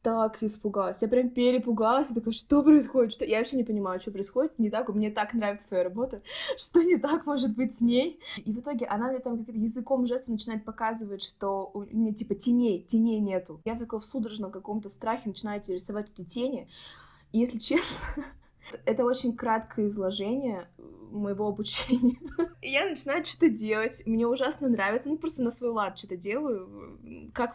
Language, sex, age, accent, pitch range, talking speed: Russian, female, 20-39, native, 210-255 Hz, 185 wpm